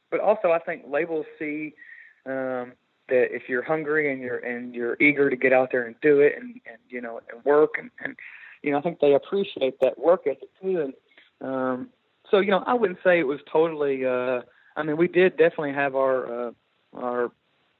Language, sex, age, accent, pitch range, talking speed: English, male, 40-59, American, 130-155 Hz, 210 wpm